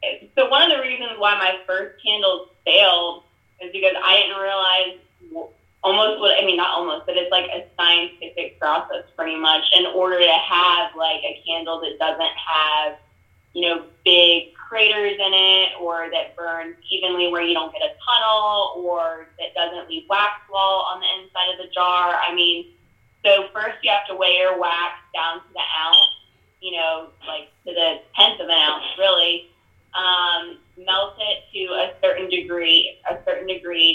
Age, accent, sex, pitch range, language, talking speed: 20-39, American, female, 165-190 Hz, English, 180 wpm